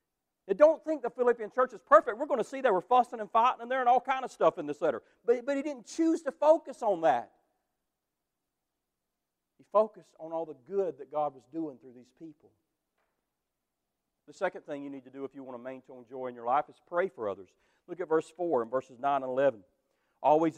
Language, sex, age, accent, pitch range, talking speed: English, male, 40-59, American, 150-240 Hz, 230 wpm